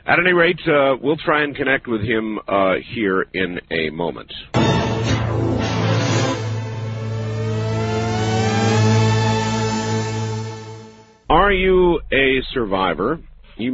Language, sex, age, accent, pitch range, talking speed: English, male, 50-69, American, 110-150 Hz, 85 wpm